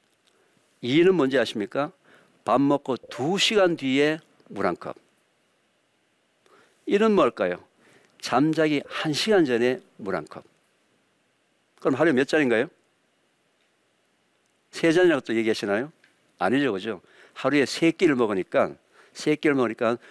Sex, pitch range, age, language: male, 120-165 Hz, 50-69, Korean